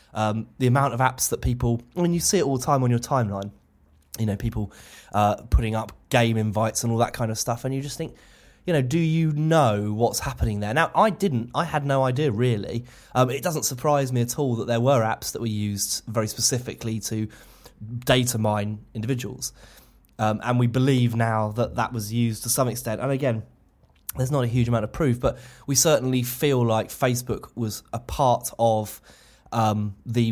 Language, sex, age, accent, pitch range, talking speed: English, male, 20-39, British, 110-135 Hz, 210 wpm